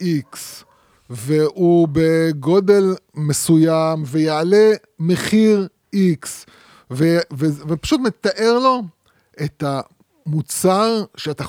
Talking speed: 70 wpm